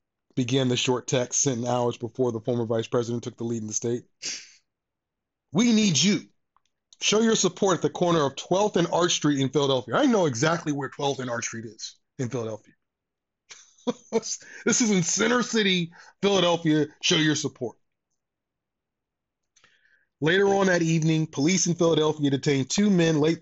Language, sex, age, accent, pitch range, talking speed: English, male, 30-49, American, 135-190 Hz, 165 wpm